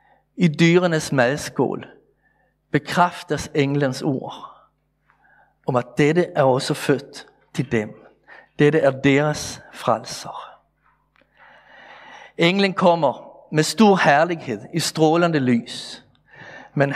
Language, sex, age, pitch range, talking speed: Danish, male, 50-69, 135-175 Hz, 95 wpm